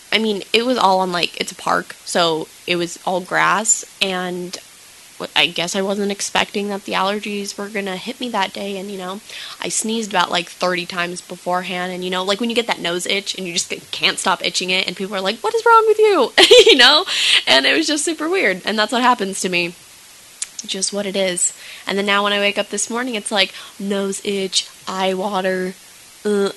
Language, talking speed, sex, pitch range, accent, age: English, 230 wpm, female, 180-245 Hz, American, 10-29